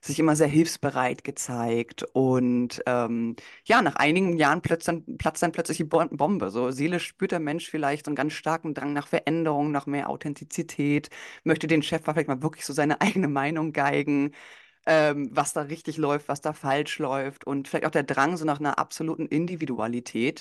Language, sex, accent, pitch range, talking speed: German, female, German, 135-160 Hz, 190 wpm